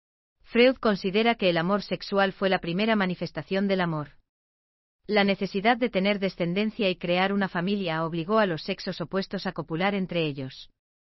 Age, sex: 40-59, female